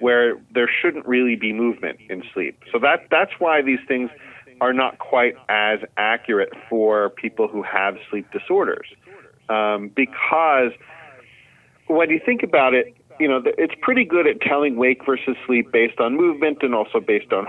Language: English